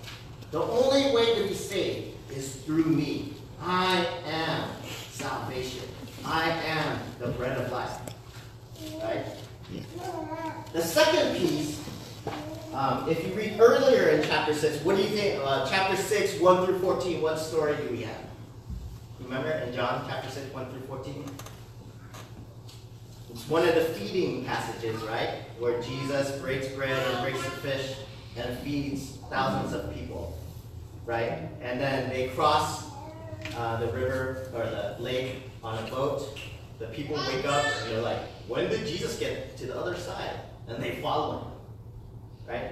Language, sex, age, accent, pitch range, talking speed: English, male, 40-59, American, 115-155 Hz, 150 wpm